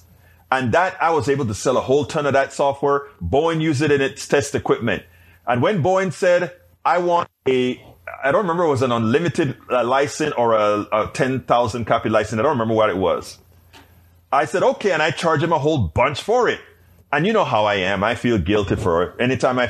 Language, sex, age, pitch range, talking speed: English, male, 30-49, 105-170 Hz, 220 wpm